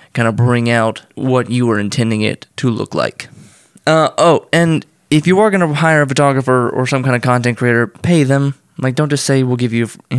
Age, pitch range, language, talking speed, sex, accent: 20-39, 120-140 Hz, English, 230 wpm, male, American